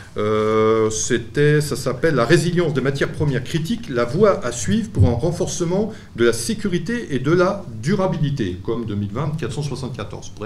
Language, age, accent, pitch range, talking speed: French, 40-59, French, 110-165 Hz, 155 wpm